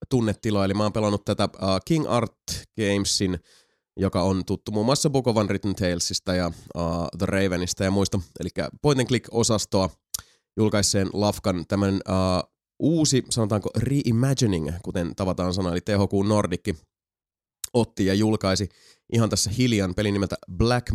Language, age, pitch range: Finnish, 20-39, 95-110 Hz